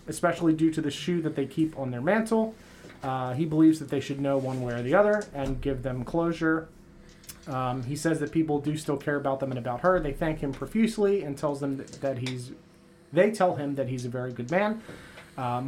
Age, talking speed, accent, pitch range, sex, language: 30-49, 230 wpm, American, 140-175 Hz, male, English